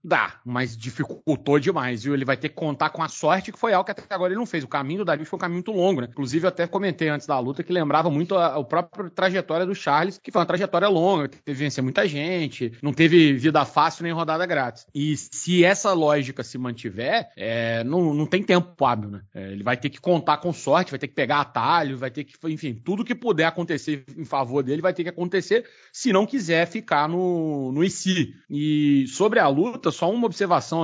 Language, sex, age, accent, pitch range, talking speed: Portuguese, male, 30-49, Brazilian, 140-180 Hz, 235 wpm